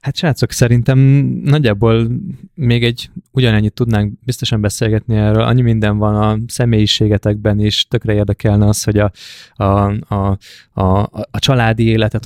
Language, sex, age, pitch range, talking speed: Hungarian, male, 20-39, 100-120 Hz, 140 wpm